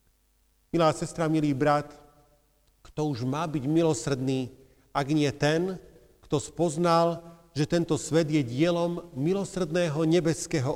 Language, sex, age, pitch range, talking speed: Slovak, male, 50-69, 135-170 Hz, 115 wpm